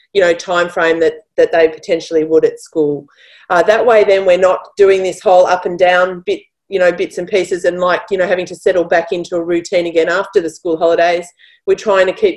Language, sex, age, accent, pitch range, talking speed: English, female, 30-49, Australian, 160-215 Hz, 240 wpm